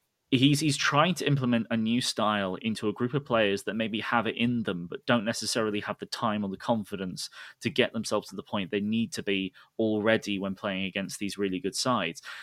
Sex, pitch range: male, 100-120 Hz